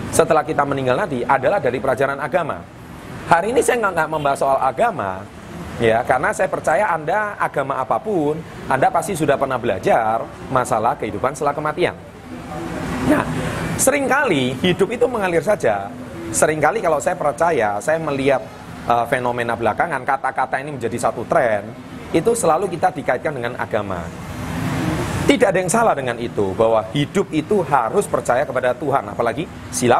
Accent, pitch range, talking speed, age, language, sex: native, 120-180 Hz, 150 wpm, 30-49, Indonesian, male